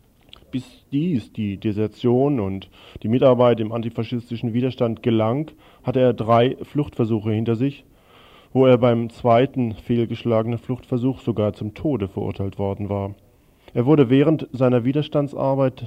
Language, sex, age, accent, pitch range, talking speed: German, male, 40-59, German, 105-130 Hz, 130 wpm